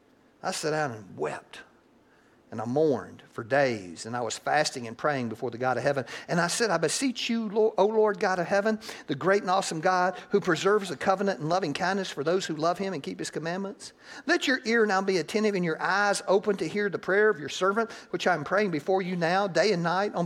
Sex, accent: male, American